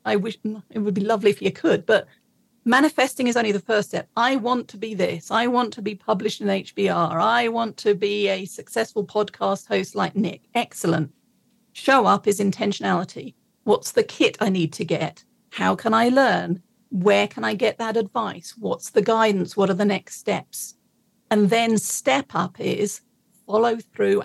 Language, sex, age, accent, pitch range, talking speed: English, female, 40-59, British, 195-235 Hz, 185 wpm